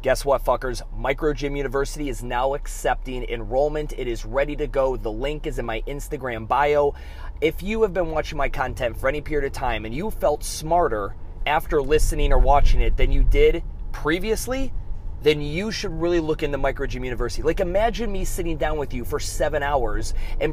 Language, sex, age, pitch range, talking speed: English, male, 30-49, 125-170 Hz, 195 wpm